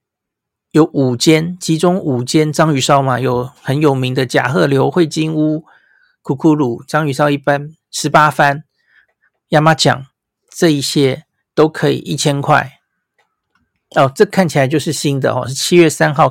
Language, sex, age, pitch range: Chinese, male, 50-69, 135-165 Hz